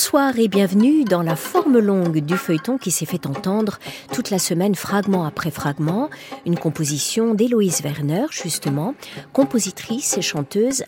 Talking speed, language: 150 wpm, French